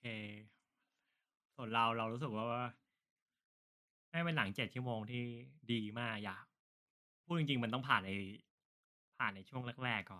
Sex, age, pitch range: male, 20-39, 100-125 Hz